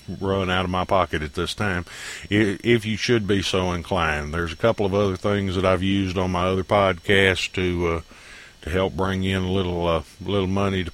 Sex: male